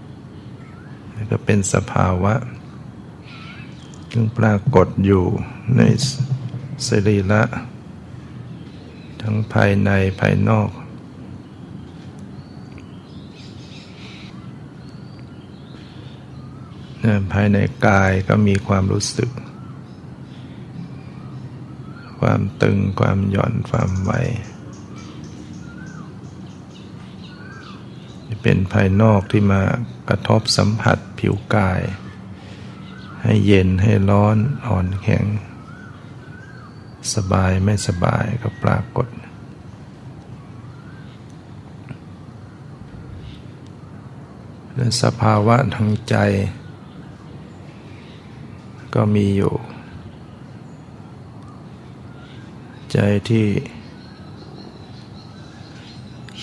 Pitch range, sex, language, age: 100-120 Hz, male, Thai, 60-79